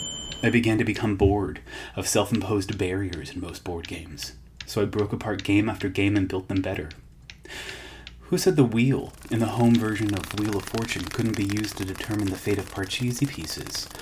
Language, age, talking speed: English, 30-49, 195 wpm